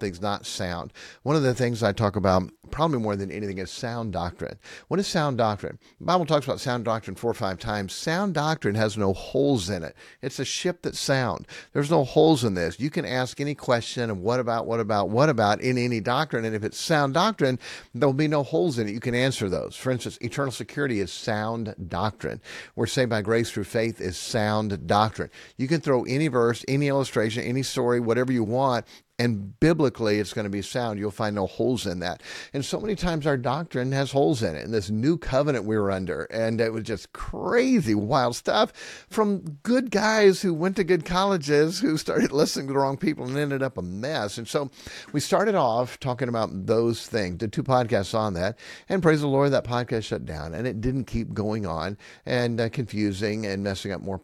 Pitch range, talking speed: 105-140 Hz, 220 wpm